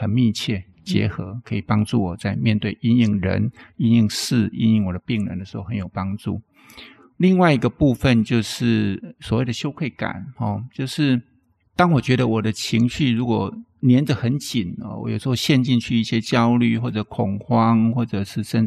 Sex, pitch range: male, 105-125 Hz